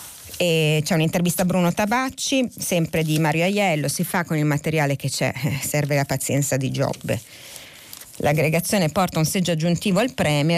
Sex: female